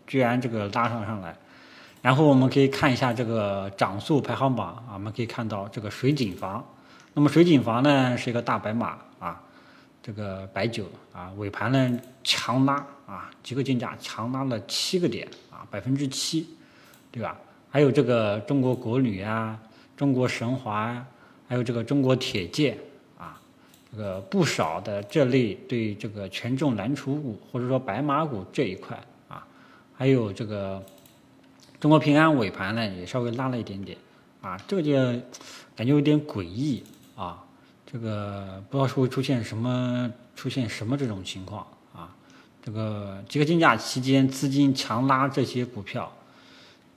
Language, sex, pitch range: Chinese, male, 105-135 Hz